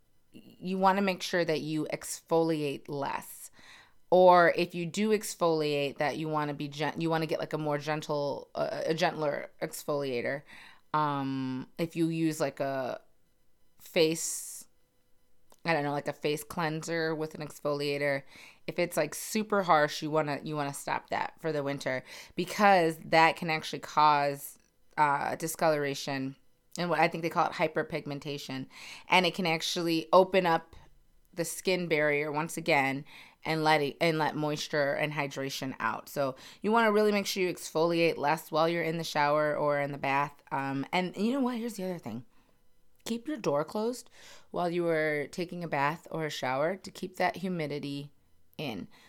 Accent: American